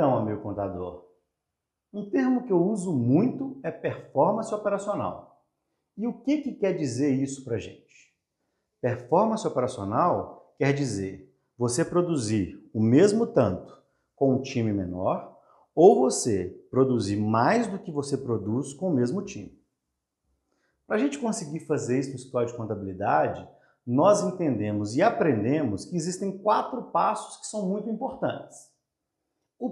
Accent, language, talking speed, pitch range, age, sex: Brazilian, Portuguese, 140 wpm, 120-200 Hz, 50-69, male